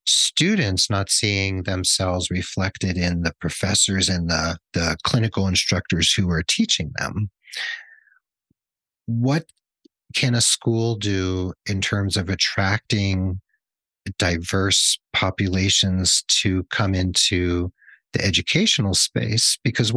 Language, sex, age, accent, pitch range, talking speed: English, male, 40-59, American, 90-115 Hz, 105 wpm